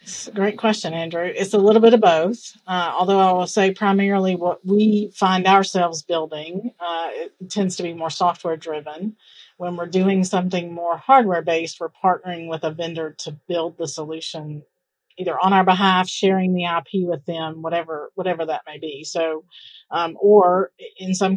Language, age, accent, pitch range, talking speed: English, 40-59, American, 165-190 Hz, 185 wpm